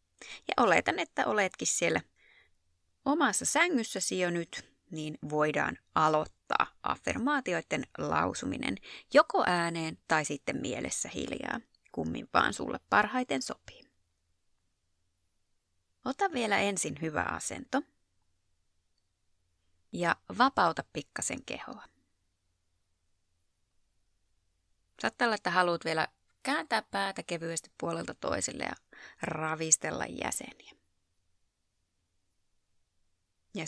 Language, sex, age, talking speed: Finnish, female, 20-39, 85 wpm